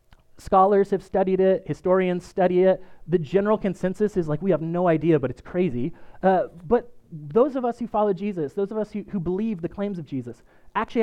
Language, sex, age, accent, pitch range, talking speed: English, male, 30-49, American, 155-190 Hz, 205 wpm